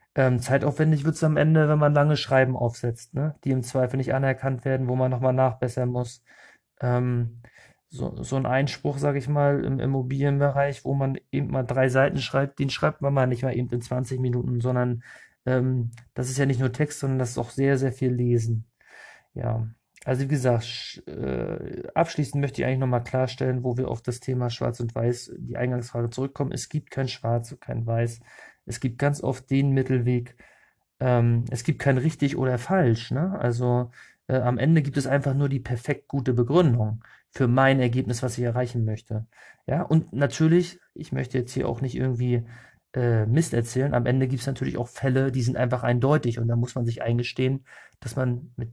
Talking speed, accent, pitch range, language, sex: 195 wpm, German, 120-140 Hz, German, male